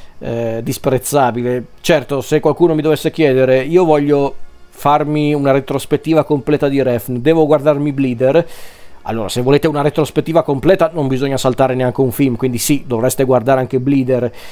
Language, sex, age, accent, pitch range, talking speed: Italian, male, 40-59, native, 125-150 Hz, 155 wpm